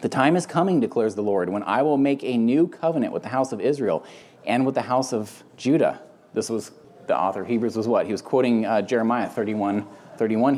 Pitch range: 120-165 Hz